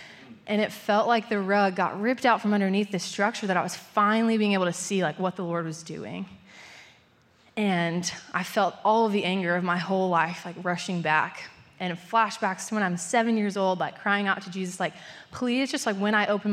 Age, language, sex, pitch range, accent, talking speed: 20-39, English, female, 185-220 Hz, American, 220 wpm